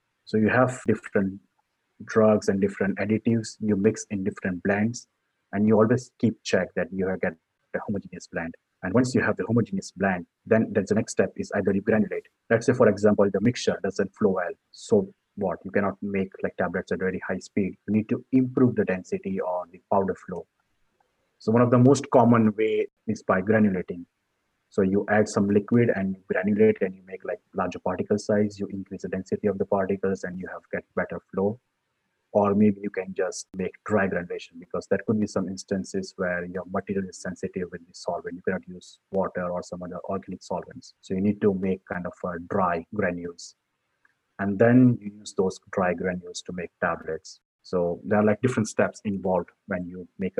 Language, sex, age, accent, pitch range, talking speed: English, male, 30-49, Indian, 95-110 Hz, 200 wpm